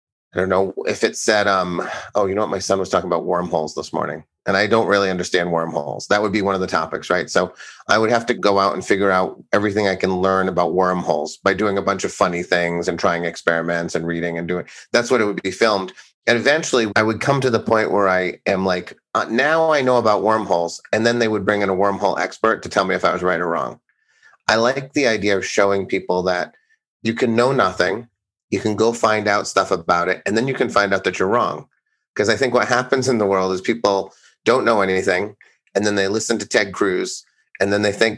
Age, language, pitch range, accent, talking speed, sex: 30-49, English, 95-110 Hz, American, 250 wpm, male